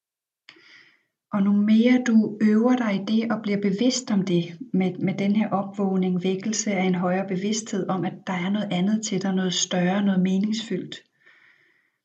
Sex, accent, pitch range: female, native, 200-240 Hz